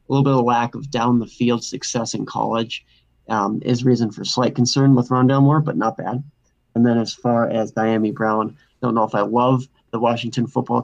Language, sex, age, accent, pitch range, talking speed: English, male, 30-49, American, 115-135 Hz, 215 wpm